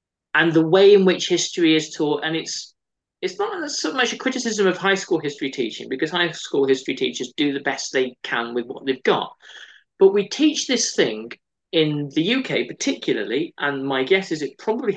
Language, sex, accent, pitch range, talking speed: English, male, British, 135-205 Hz, 200 wpm